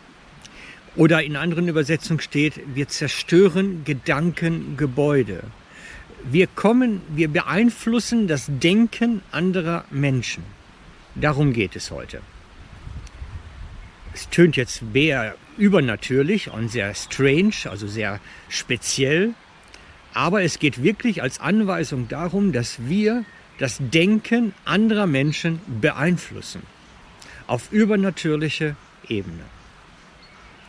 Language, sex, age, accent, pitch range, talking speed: German, male, 60-79, German, 120-165 Hz, 95 wpm